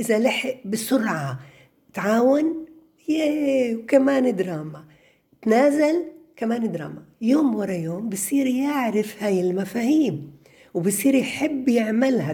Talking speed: 95 wpm